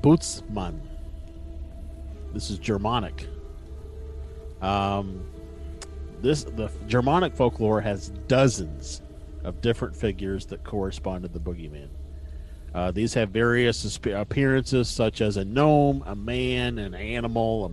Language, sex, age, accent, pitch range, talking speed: English, male, 40-59, American, 75-110 Hz, 110 wpm